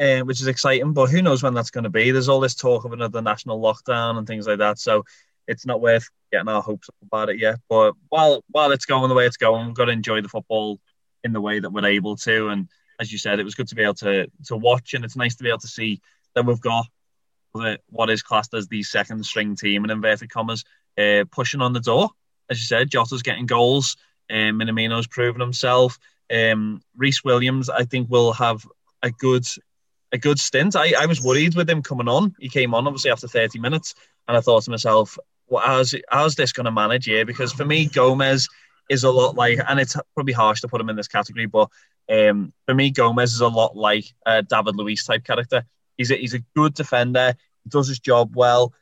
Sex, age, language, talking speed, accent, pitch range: male, 20-39, English, 235 wpm, British, 110-130 Hz